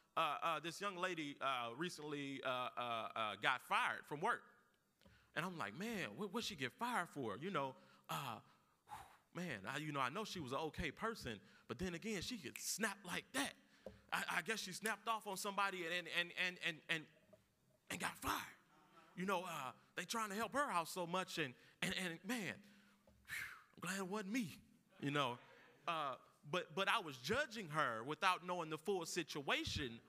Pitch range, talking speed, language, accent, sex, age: 160-200 Hz, 195 wpm, English, American, male, 30-49